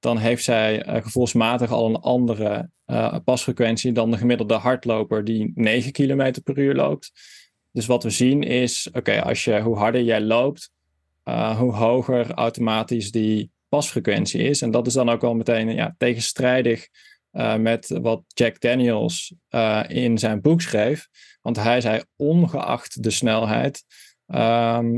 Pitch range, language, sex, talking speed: 110-125 Hz, Dutch, male, 150 wpm